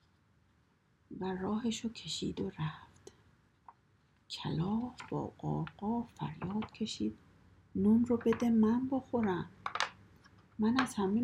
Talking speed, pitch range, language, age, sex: 95 wpm, 165-225 Hz, Persian, 50-69, female